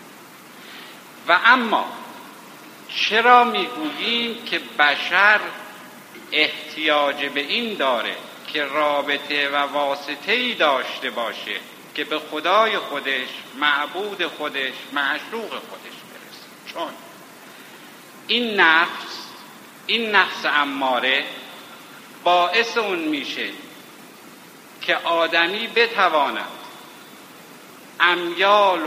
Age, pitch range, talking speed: 60-79, 150-210 Hz, 80 wpm